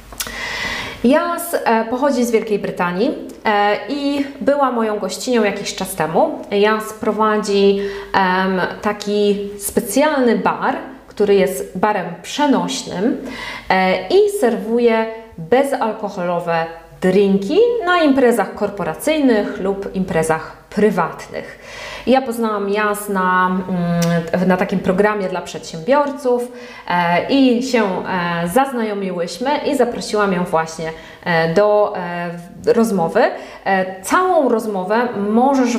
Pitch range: 185-245 Hz